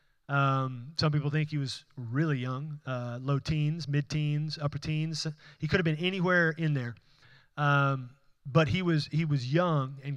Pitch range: 145-175 Hz